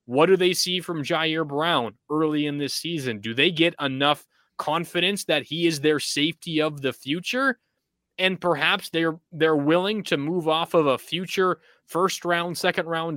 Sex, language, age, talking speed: male, English, 20-39, 180 wpm